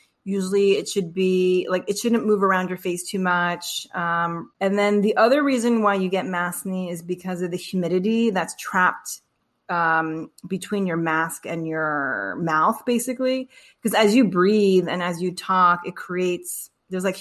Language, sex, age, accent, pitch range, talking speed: English, female, 30-49, American, 175-210 Hz, 175 wpm